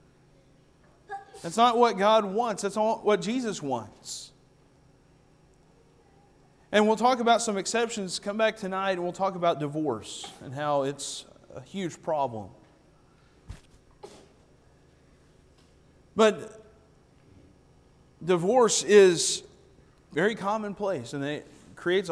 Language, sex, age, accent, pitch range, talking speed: English, male, 40-59, American, 170-230 Hz, 105 wpm